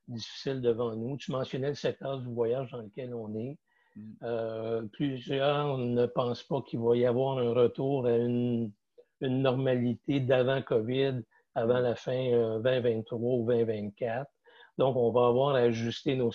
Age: 60-79